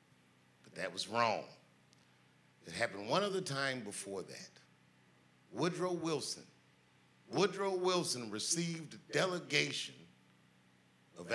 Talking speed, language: 95 wpm, English